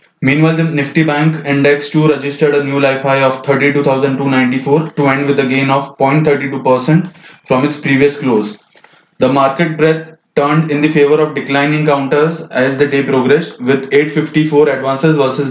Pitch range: 135-155 Hz